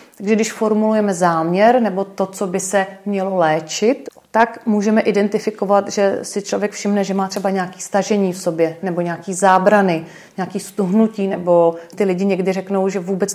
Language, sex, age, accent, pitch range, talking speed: Czech, female, 30-49, native, 175-210 Hz, 165 wpm